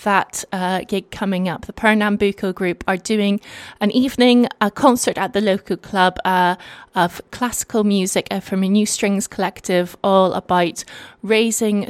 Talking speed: 150 wpm